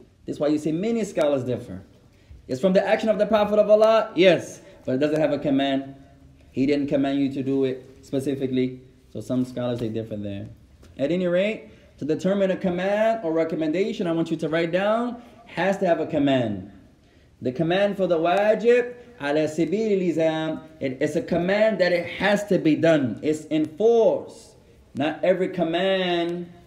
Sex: male